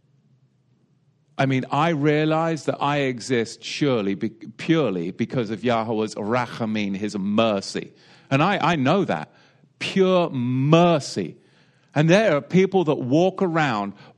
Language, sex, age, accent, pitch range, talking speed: English, male, 50-69, British, 120-165 Hz, 125 wpm